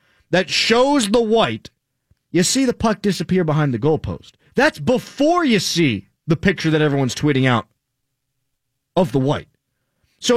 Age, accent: 30-49, American